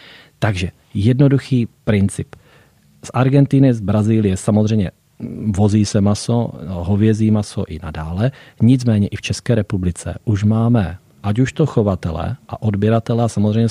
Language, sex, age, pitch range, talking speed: Czech, male, 40-59, 95-110 Hz, 130 wpm